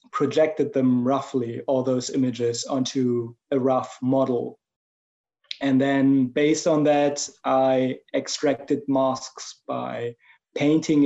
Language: English